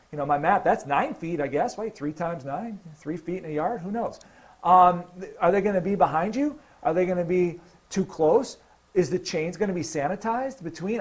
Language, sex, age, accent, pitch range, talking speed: English, male, 40-59, American, 155-210 Hz, 220 wpm